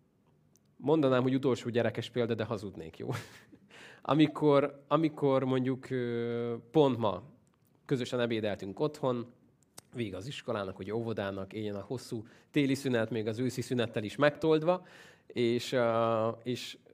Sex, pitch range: male, 110-145 Hz